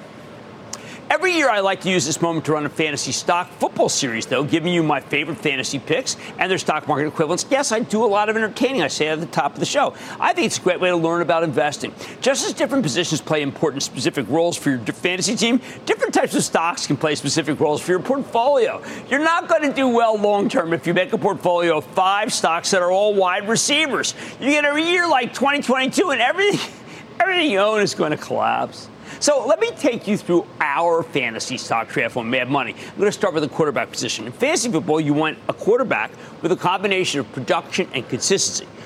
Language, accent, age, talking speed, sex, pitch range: English, American, 50-69, 220 wpm, male, 155-230 Hz